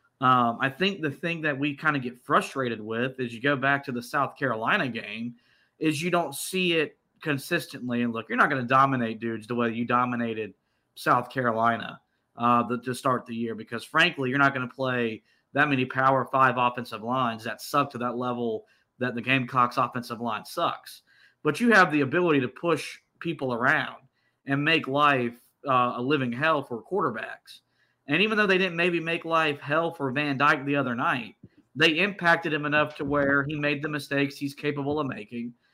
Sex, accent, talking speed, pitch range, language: male, American, 195 wpm, 125-155 Hz, English